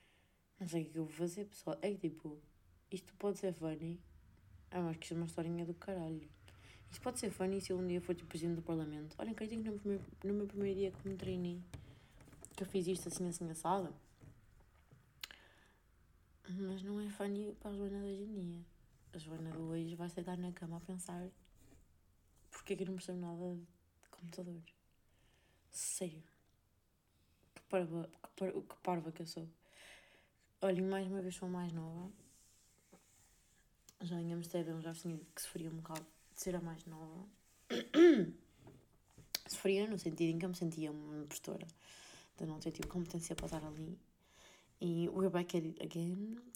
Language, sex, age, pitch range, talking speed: Portuguese, female, 20-39, 165-190 Hz, 180 wpm